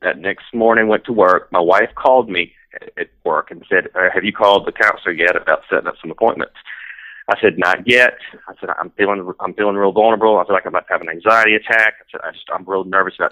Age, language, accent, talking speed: 40-59, English, American, 245 wpm